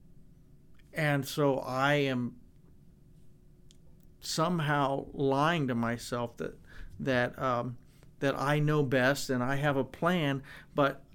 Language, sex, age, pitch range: English, male, 50-69, 135-160 Hz